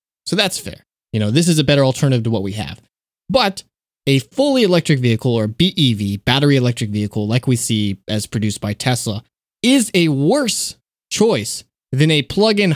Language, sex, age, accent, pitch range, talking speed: English, male, 20-39, American, 115-165 Hz, 180 wpm